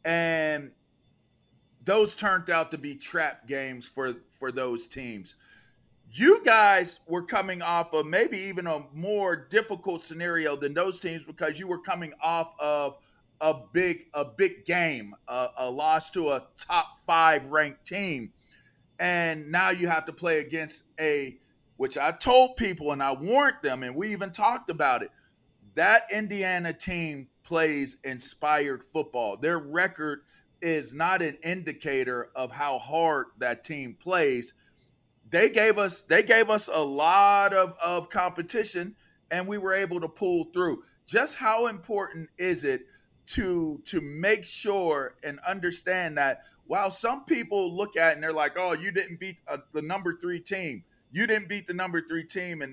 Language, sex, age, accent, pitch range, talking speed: English, male, 40-59, American, 150-200 Hz, 160 wpm